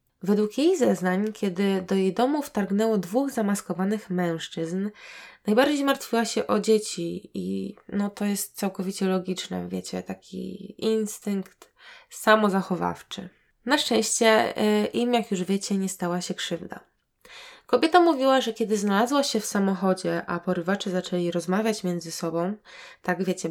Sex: female